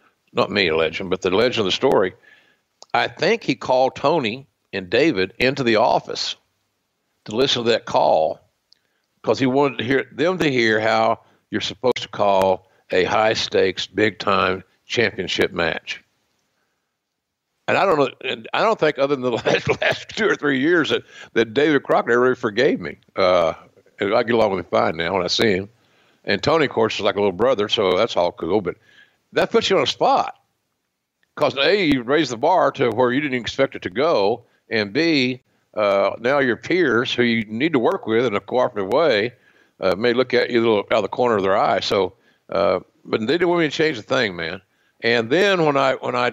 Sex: male